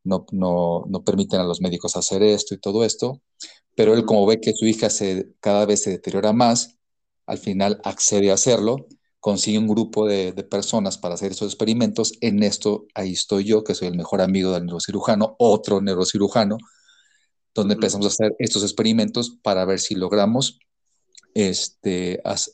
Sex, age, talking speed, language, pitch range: male, 40-59, 175 wpm, Spanish, 95-110 Hz